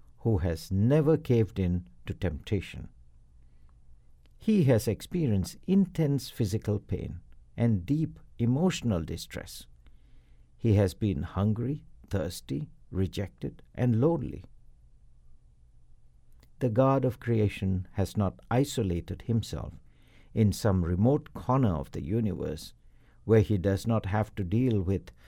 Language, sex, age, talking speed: English, male, 60-79, 115 wpm